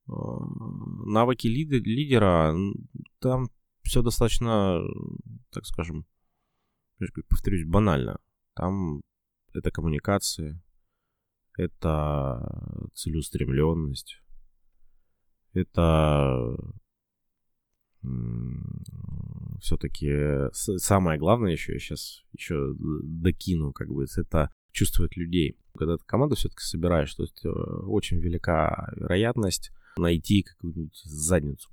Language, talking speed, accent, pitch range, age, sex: Russian, 75 wpm, native, 80-100 Hz, 20-39, male